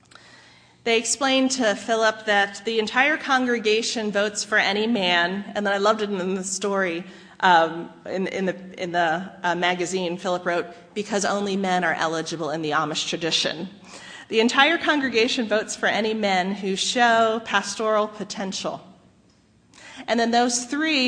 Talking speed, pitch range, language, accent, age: 150 wpm, 185-230 Hz, English, American, 40-59